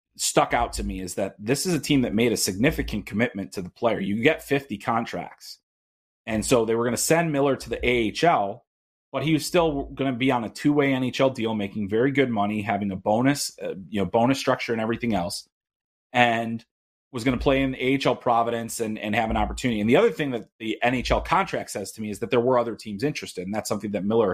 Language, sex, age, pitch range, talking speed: English, male, 30-49, 105-140 Hz, 240 wpm